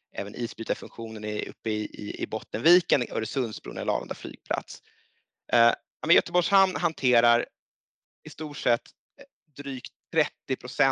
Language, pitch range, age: Swedish, 115-150 Hz, 30-49